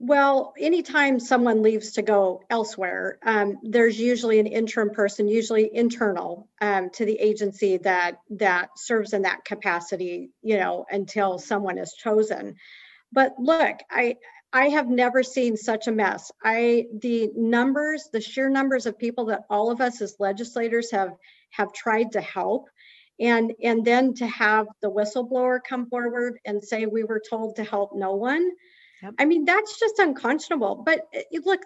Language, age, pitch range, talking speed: English, 50-69, 215-280 Hz, 160 wpm